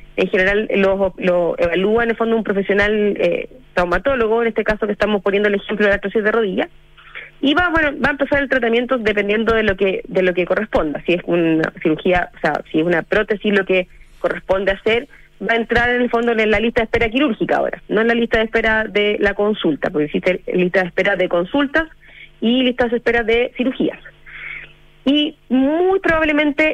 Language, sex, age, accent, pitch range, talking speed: Spanish, female, 30-49, Argentinian, 195-245 Hz, 210 wpm